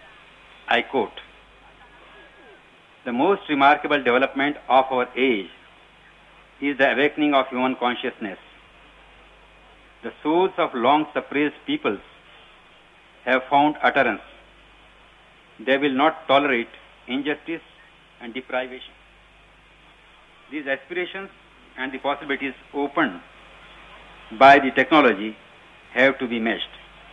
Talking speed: 95 wpm